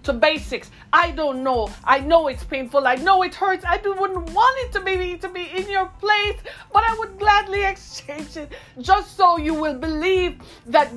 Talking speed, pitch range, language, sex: 195 wpm, 300-365 Hz, English, female